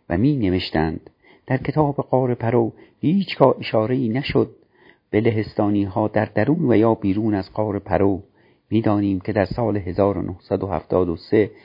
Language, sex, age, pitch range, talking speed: Persian, male, 50-69, 85-110 Hz, 135 wpm